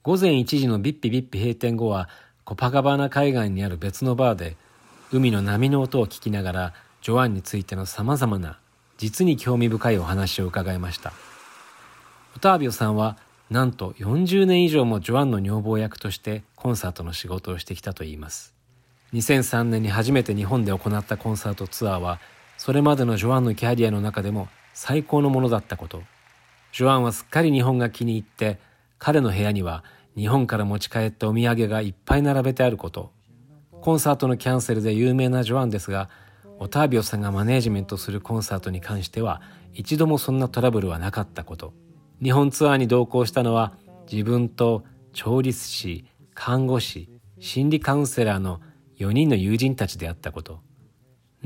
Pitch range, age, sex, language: 100-130 Hz, 40-59, male, Japanese